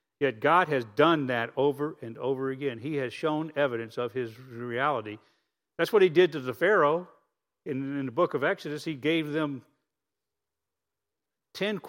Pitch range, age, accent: 125-160 Hz, 50-69, American